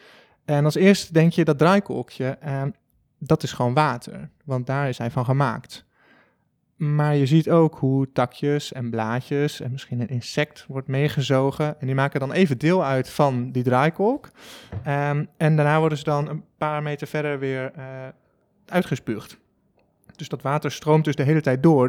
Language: Dutch